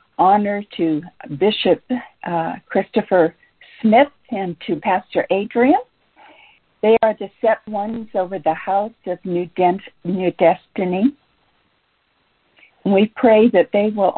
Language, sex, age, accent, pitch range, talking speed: English, female, 60-79, American, 170-205 Hz, 115 wpm